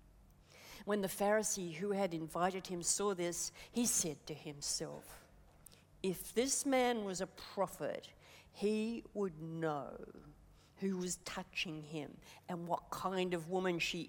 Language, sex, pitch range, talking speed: English, female, 150-210 Hz, 135 wpm